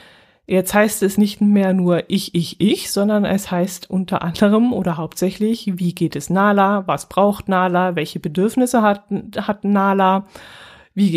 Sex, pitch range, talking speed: female, 175-205 Hz, 155 wpm